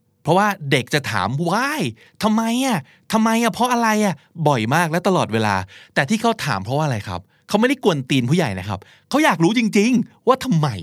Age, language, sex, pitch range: 20-39, Thai, male, 110-165 Hz